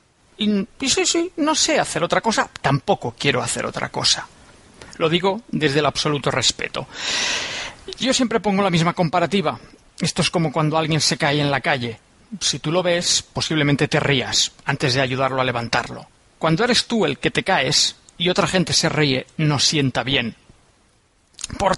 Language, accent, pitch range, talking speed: Spanish, Spanish, 145-185 Hz, 175 wpm